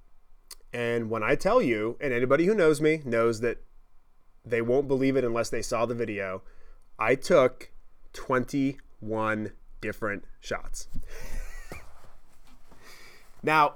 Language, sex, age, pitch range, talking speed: English, male, 20-39, 120-180 Hz, 120 wpm